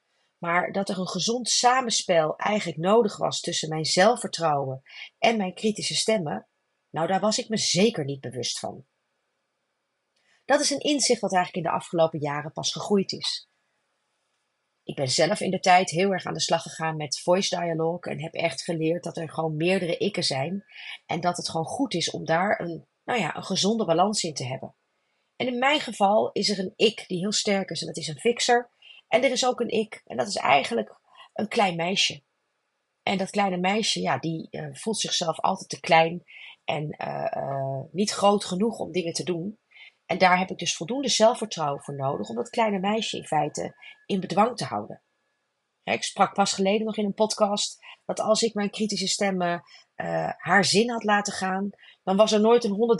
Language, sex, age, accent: Dutch, female, 30-49, Dutch